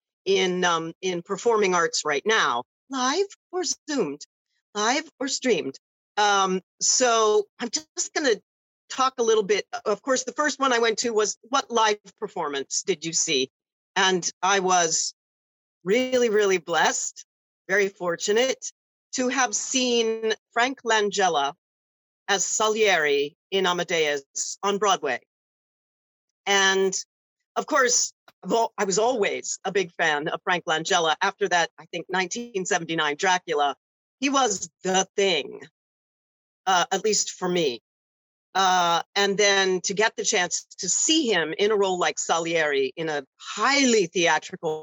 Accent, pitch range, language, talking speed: American, 175-235 Hz, English, 135 wpm